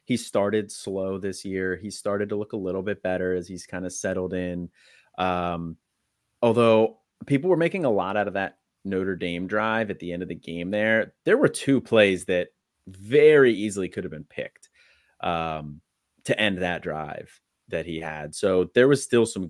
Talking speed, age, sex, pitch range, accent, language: 195 wpm, 30-49, male, 90-110 Hz, American, English